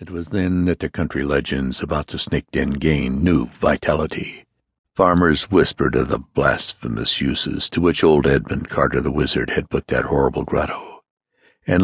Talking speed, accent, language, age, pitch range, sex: 165 wpm, American, English, 60-79, 75-110 Hz, male